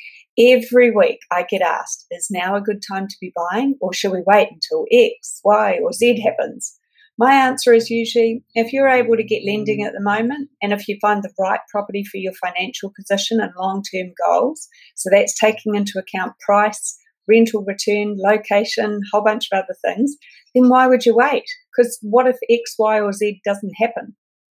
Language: English